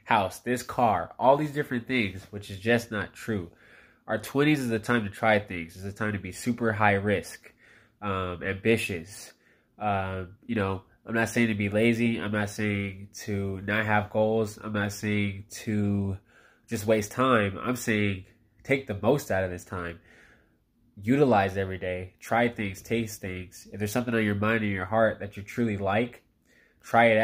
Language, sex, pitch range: English, male, 100-120 Hz